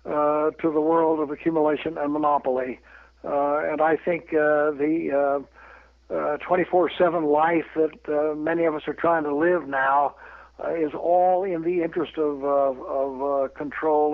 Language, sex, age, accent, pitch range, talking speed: English, male, 60-79, American, 140-165 Hz, 170 wpm